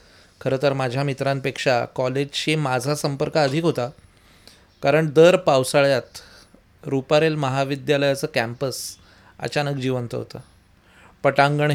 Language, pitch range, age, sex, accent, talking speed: Marathi, 115-155 Hz, 30-49, male, native, 95 wpm